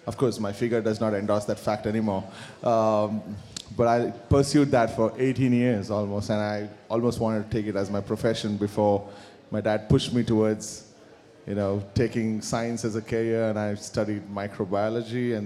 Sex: male